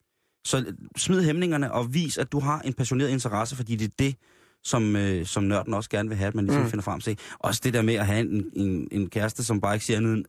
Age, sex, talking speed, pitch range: 30-49, male, 255 wpm, 100-125 Hz